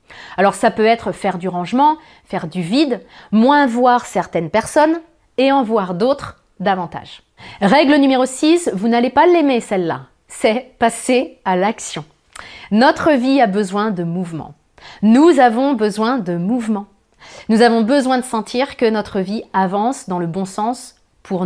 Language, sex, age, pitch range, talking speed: French, female, 30-49, 205-270 Hz, 155 wpm